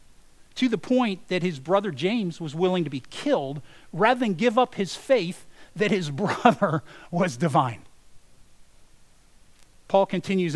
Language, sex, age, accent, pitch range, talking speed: English, male, 40-59, American, 130-175 Hz, 140 wpm